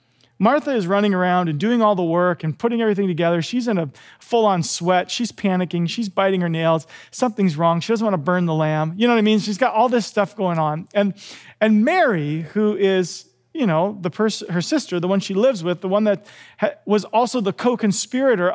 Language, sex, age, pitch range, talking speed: English, male, 40-59, 175-255 Hz, 225 wpm